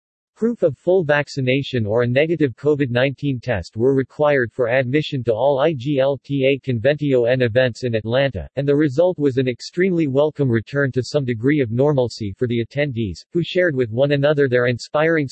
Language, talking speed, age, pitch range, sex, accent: English, 170 wpm, 50-69, 120-150 Hz, male, American